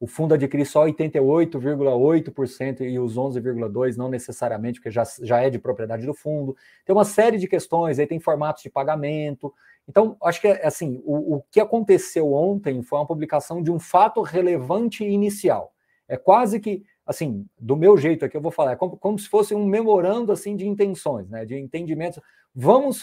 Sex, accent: male, Brazilian